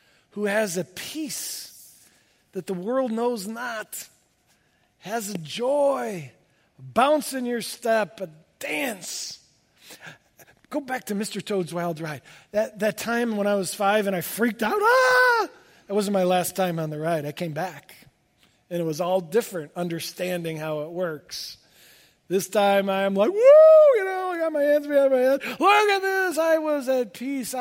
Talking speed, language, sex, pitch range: 170 wpm, English, male, 165-250 Hz